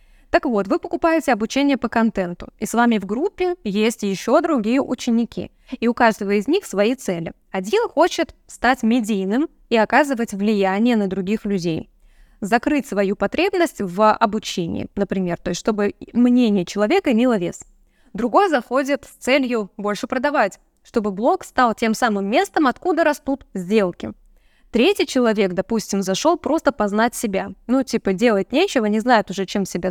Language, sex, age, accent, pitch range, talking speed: Russian, female, 20-39, native, 205-285 Hz, 155 wpm